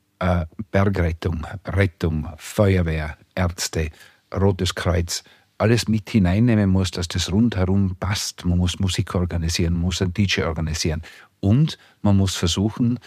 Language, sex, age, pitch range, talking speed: German, male, 50-69, 90-105 Hz, 120 wpm